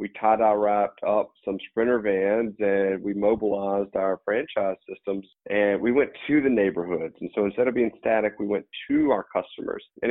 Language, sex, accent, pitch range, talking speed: English, male, American, 105-125 Hz, 190 wpm